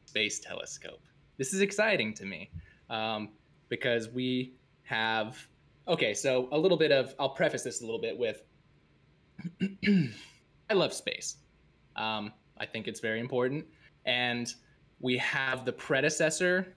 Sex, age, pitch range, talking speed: male, 20-39, 120-155 Hz, 130 wpm